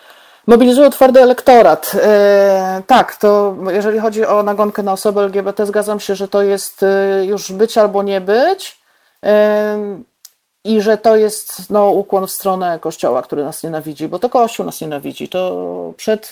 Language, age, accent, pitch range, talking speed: Polish, 40-59, native, 165-210 Hz, 160 wpm